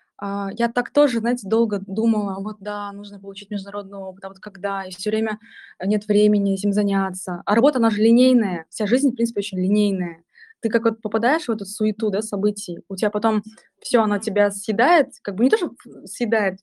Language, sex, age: Russian, female, 20-39